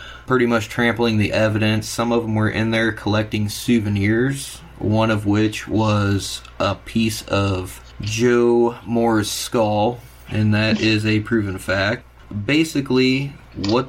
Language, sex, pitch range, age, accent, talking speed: English, male, 105-120 Hz, 20-39, American, 135 wpm